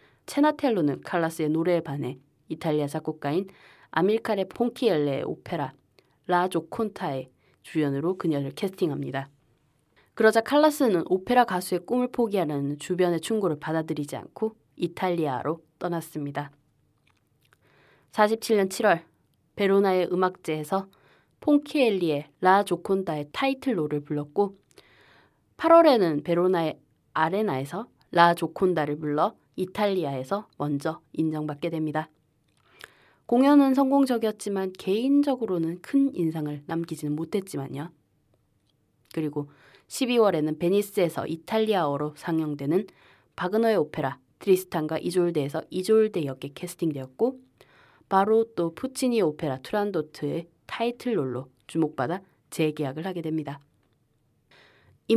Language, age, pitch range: Korean, 20-39, 145-200 Hz